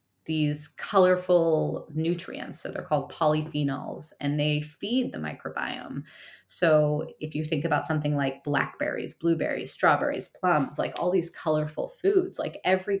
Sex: female